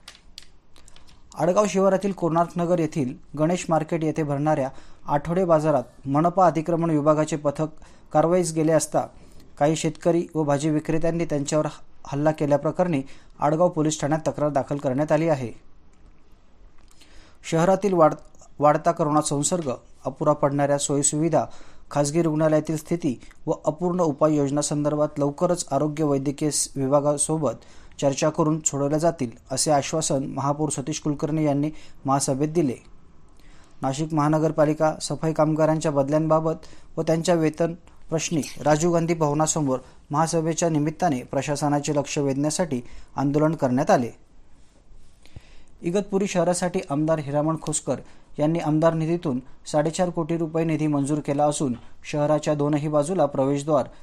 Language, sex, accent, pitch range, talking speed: Marathi, male, native, 145-160 Hz, 110 wpm